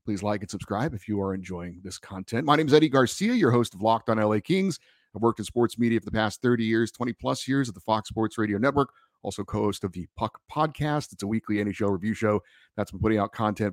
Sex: male